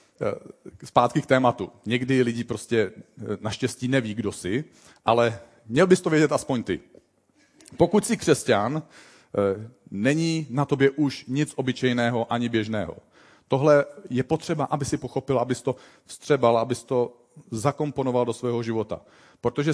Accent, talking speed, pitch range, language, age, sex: native, 135 wpm, 115-150 Hz, Czech, 40-59, male